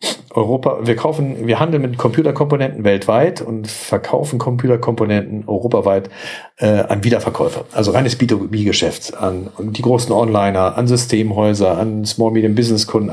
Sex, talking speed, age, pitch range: male, 125 wpm, 50-69, 105-125 Hz